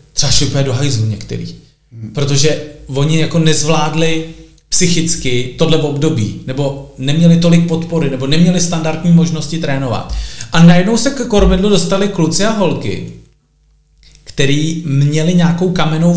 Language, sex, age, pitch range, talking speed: Czech, male, 40-59, 135-170 Hz, 120 wpm